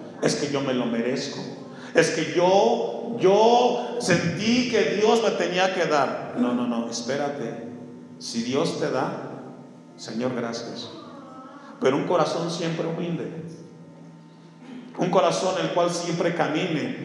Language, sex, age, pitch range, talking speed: Spanish, male, 50-69, 165-230 Hz, 135 wpm